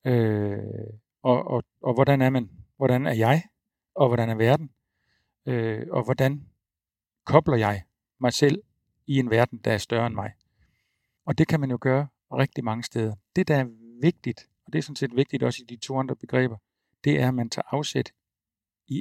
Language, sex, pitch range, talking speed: Danish, male, 110-135 Hz, 195 wpm